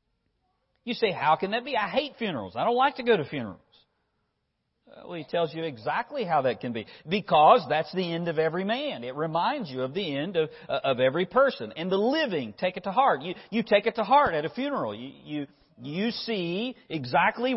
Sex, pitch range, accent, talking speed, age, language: male, 145-205 Hz, American, 210 wpm, 50-69, English